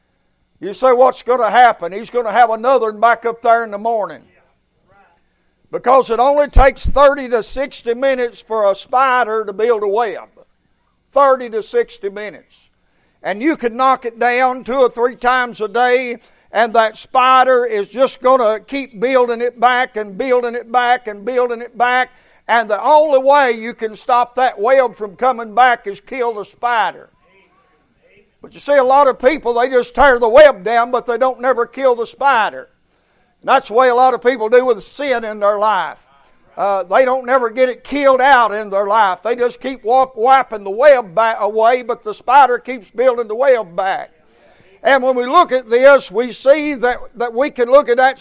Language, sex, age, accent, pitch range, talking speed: English, male, 60-79, American, 230-265 Hz, 200 wpm